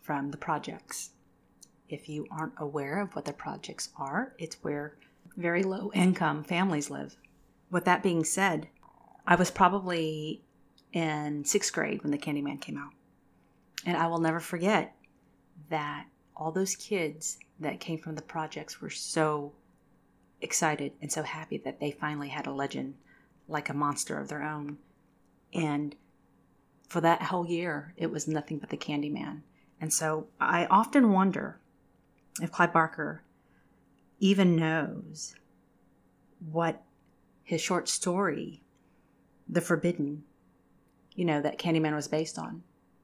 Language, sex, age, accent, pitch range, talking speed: English, female, 30-49, American, 140-175 Hz, 140 wpm